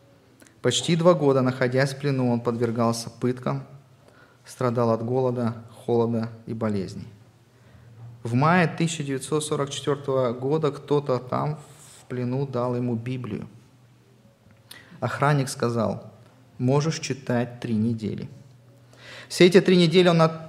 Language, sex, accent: Russian, male, native